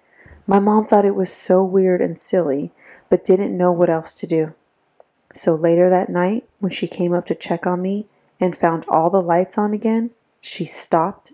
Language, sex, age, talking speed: English, female, 30-49, 195 wpm